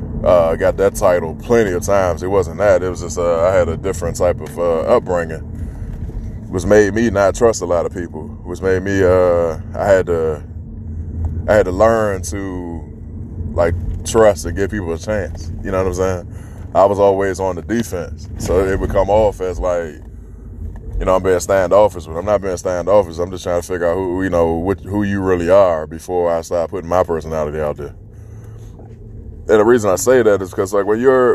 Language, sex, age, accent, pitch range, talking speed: English, male, 20-39, American, 85-105 Hz, 220 wpm